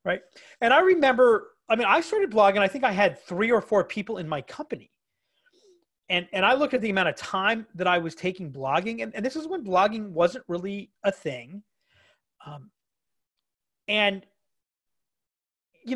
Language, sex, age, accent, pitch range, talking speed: English, male, 30-49, American, 155-230 Hz, 175 wpm